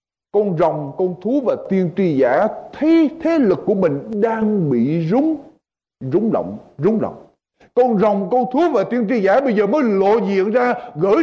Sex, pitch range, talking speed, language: male, 195-270 Hz, 185 wpm, Vietnamese